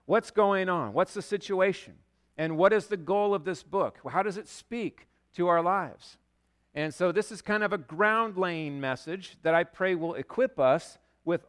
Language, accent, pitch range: English, American, 140-180 Hz